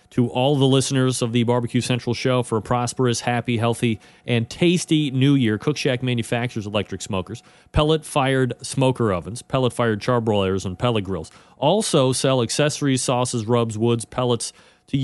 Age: 40-59